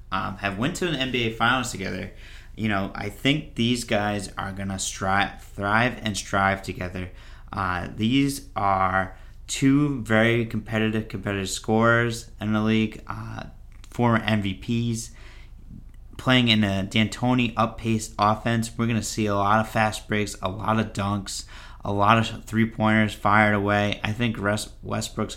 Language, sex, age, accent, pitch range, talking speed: English, male, 30-49, American, 100-110 Hz, 150 wpm